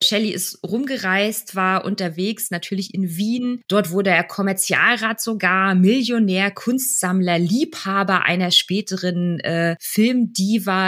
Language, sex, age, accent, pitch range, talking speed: German, female, 20-39, German, 170-200 Hz, 110 wpm